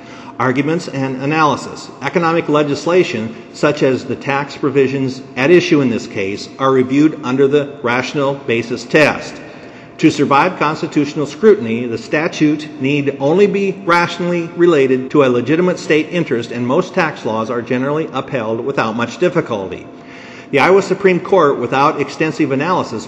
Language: English